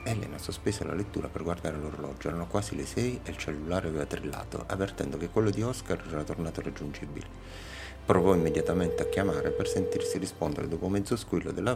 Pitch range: 80-100 Hz